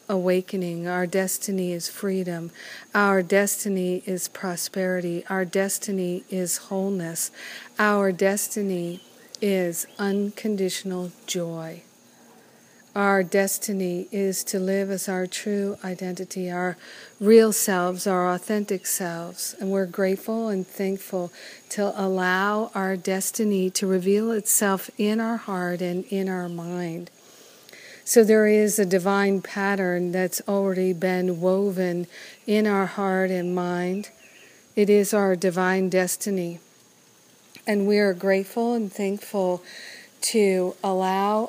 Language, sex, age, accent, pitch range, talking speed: English, female, 50-69, American, 185-205 Hz, 115 wpm